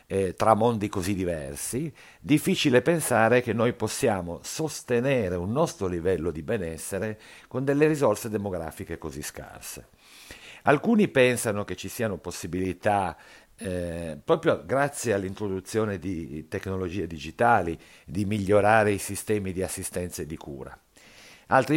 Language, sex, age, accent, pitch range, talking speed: Italian, male, 50-69, native, 85-115 Hz, 125 wpm